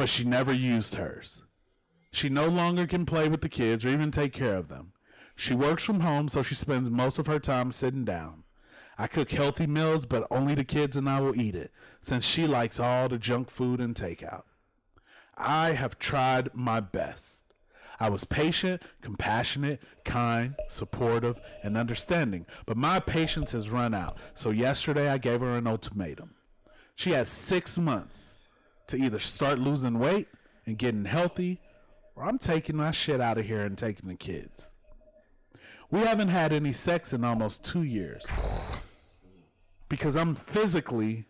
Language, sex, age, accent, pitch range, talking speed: English, male, 30-49, American, 115-155 Hz, 170 wpm